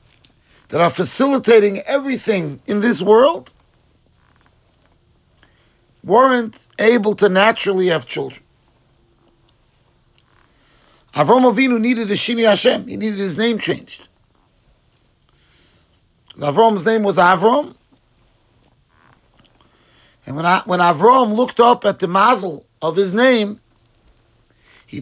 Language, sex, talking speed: English, male, 100 wpm